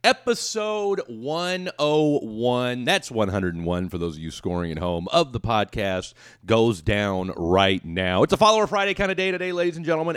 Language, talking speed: English, 170 wpm